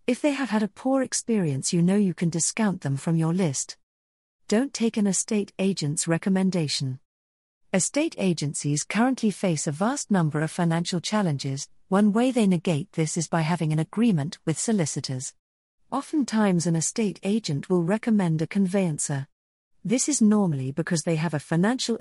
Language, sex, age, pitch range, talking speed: English, female, 50-69, 155-210 Hz, 165 wpm